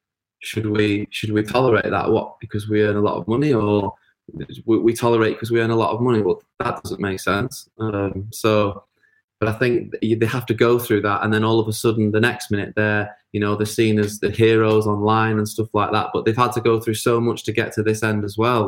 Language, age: English, 20-39